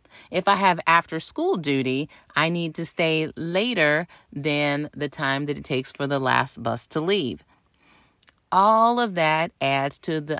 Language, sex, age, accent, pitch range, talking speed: English, female, 30-49, American, 155-205 Hz, 165 wpm